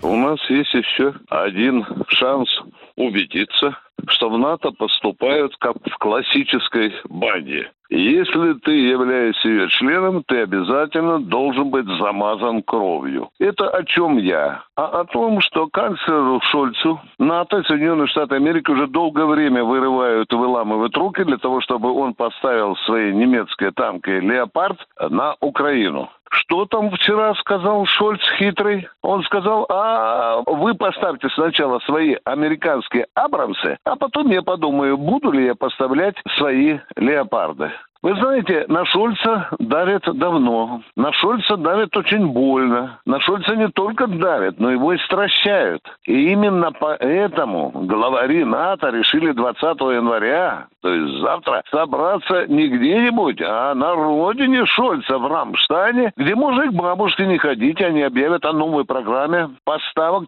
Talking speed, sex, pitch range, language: 135 wpm, male, 130-210 Hz, Russian